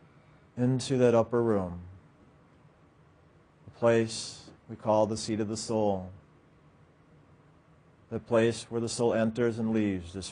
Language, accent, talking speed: English, American, 130 wpm